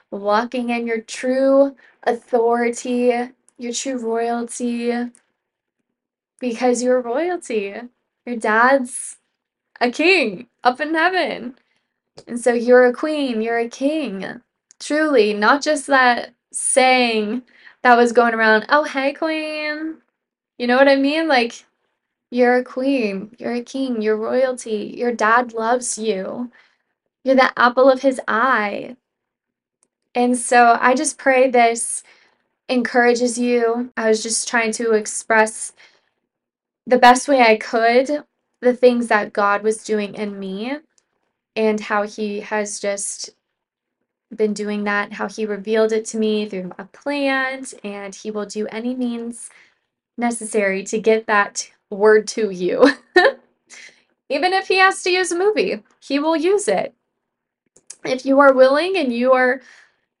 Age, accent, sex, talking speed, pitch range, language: 10-29, American, female, 140 wpm, 220-265 Hz, English